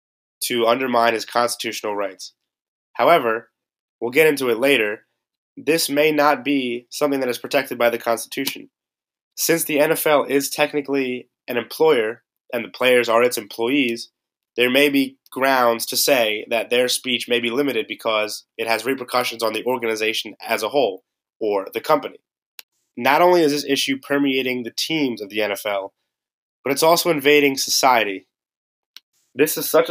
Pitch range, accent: 115-145 Hz, American